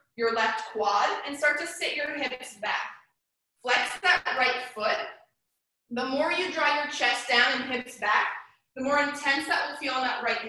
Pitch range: 250-330 Hz